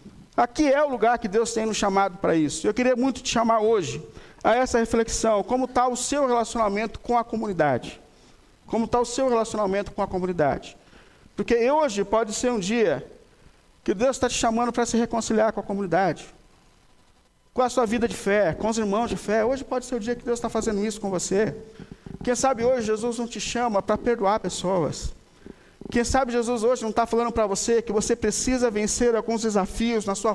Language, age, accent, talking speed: Portuguese, 50-69, Brazilian, 205 wpm